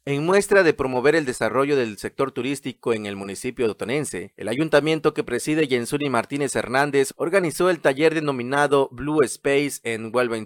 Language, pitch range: Spanish, 115-150 Hz